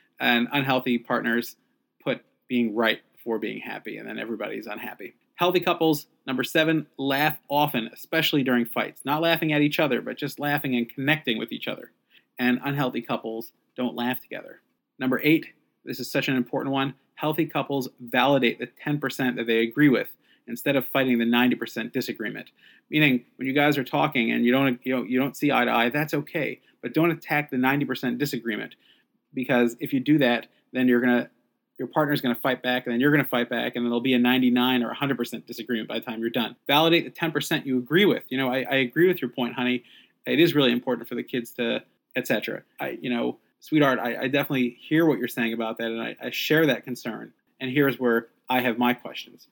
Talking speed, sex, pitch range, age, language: 210 wpm, male, 120-145 Hz, 30-49, English